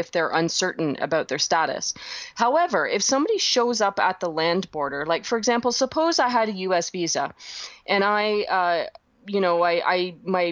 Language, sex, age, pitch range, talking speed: English, female, 30-49, 165-215 Hz, 185 wpm